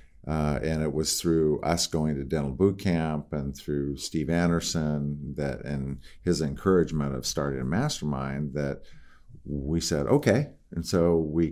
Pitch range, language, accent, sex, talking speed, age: 70-80 Hz, English, American, male, 155 wpm, 50-69